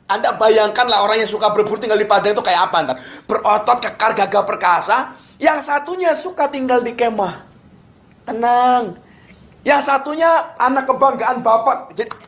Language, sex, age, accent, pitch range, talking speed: Indonesian, male, 30-49, native, 215-295 Hz, 150 wpm